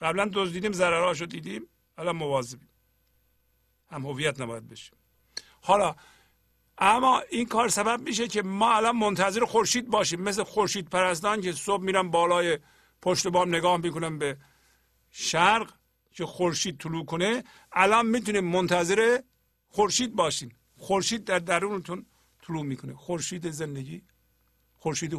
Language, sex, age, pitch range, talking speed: Persian, male, 50-69, 140-200 Hz, 125 wpm